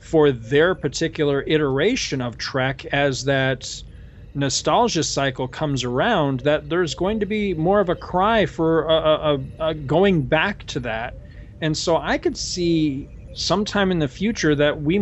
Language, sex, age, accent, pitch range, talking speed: English, male, 40-59, American, 135-170 Hz, 150 wpm